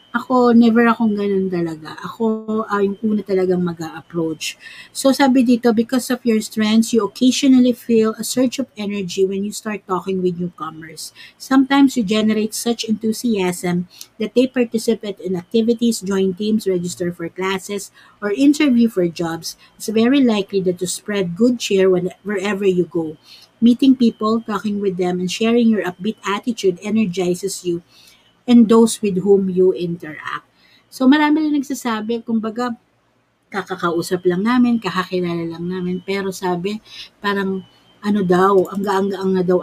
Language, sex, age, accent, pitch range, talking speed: Filipino, female, 50-69, native, 180-230 Hz, 150 wpm